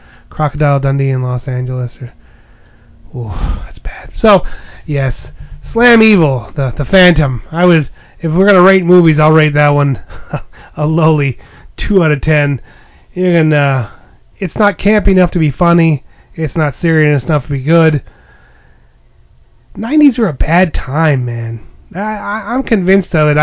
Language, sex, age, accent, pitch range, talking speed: English, male, 30-49, American, 135-180 Hz, 155 wpm